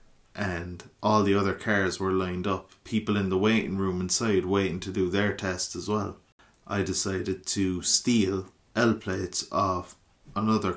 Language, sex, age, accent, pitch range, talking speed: English, male, 30-49, Irish, 90-105 Hz, 160 wpm